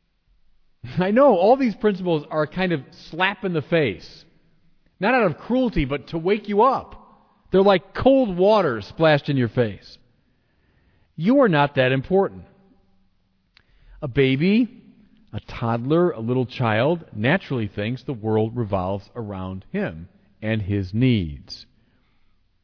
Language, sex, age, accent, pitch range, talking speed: English, male, 40-59, American, 105-170 Hz, 135 wpm